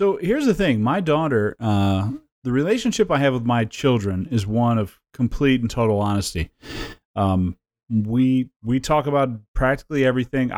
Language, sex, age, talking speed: English, male, 30-49, 160 wpm